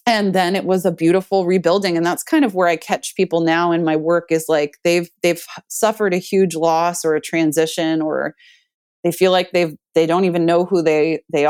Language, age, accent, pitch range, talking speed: English, 30-49, American, 155-190 Hz, 220 wpm